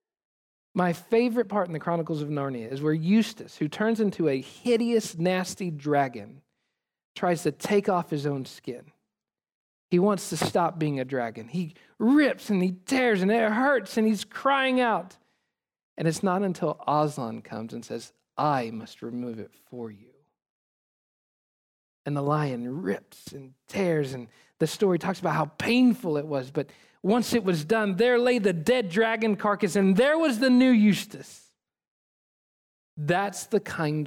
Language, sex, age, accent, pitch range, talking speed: English, male, 40-59, American, 135-205 Hz, 165 wpm